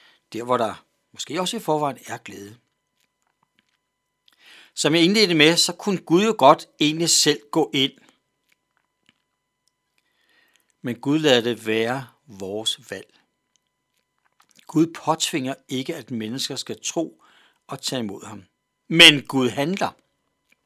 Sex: male